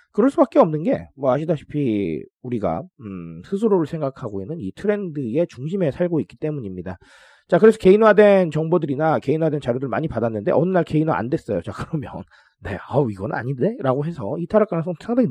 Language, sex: Korean, male